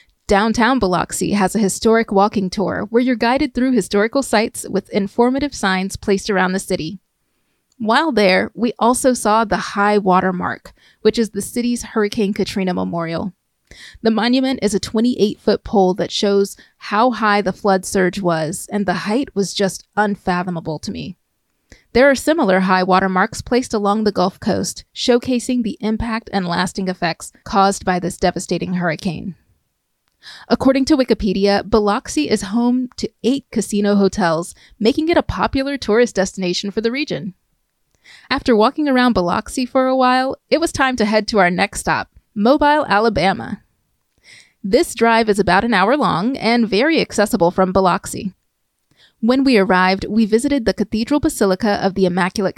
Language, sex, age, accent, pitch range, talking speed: English, female, 30-49, American, 190-240 Hz, 160 wpm